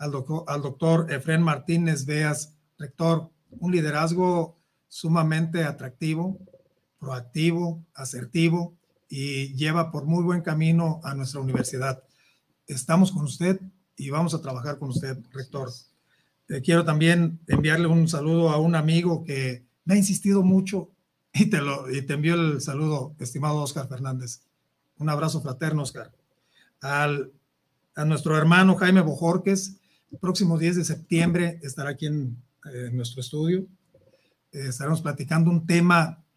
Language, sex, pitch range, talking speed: Spanish, male, 140-170 Hz, 135 wpm